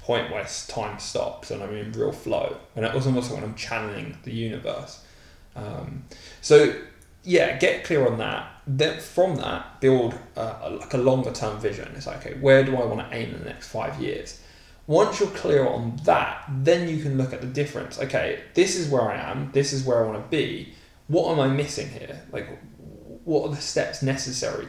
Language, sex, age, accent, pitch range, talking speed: English, male, 20-39, British, 115-150 Hz, 210 wpm